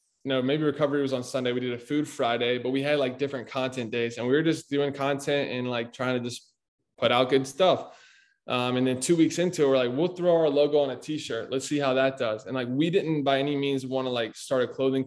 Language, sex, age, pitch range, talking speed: English, male, 20-39, 125-145 Hz, 265 wpm